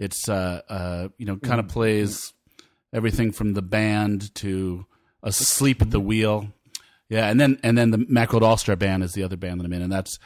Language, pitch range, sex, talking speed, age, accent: English, 95-115 Hz, male, 200 wpm, 40-59, American